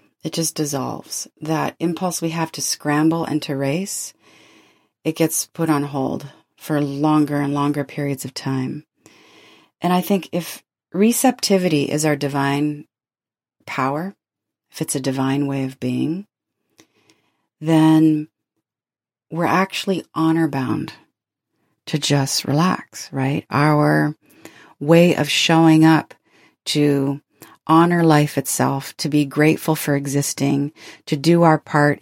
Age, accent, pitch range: 40-59, American, 145-165 Hz